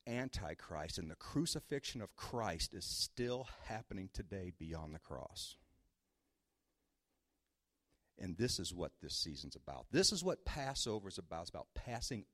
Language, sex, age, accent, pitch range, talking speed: English, male, 50-69, American, 80-125 Hz, 140 wpm